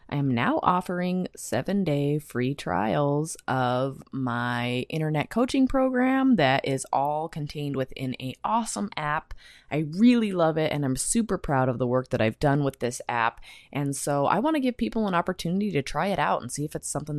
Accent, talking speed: American, 195 wpm